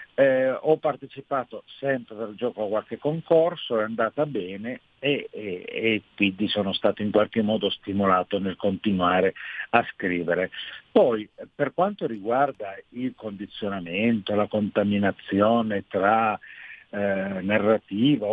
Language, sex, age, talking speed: Italian, male, 50-69, 120 wpm